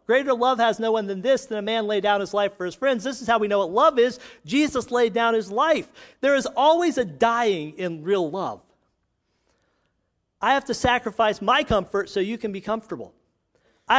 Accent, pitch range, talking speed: American, 195-250 Hz, 215 wpm